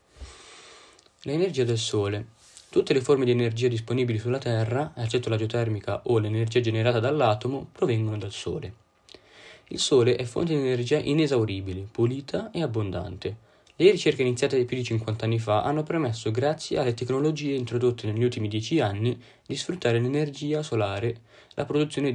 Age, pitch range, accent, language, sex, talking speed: 20-39, 115-140 Hz, native, Italian, male, 150 wpm